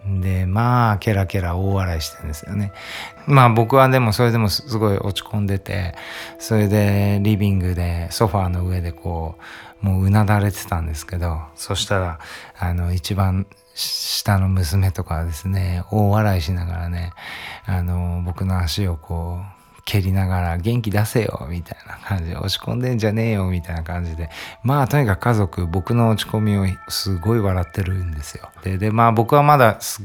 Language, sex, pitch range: Japanese, male, 90-120 Hz